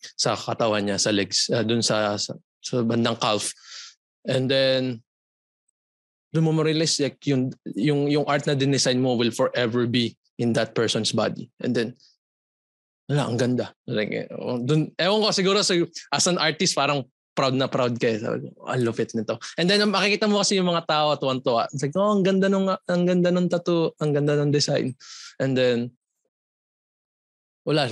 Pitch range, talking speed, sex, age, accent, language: 120-155 Hz, 175 wpm, male, 20-39, native, Filipino